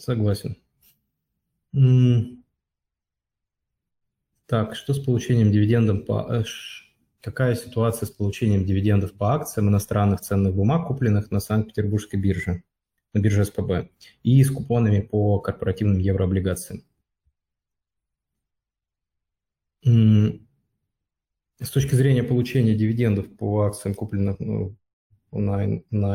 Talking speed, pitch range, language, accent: 95 wpm, 100-115 Hz, Russian, native